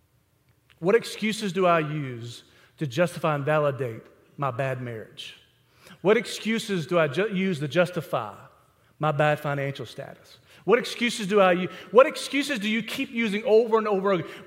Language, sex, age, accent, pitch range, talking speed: English, male, 40-59, American, 165-225 Hz, 160 wpm